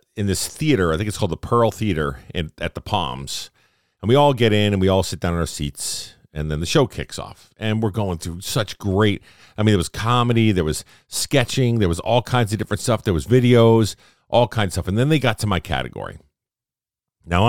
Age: 50-69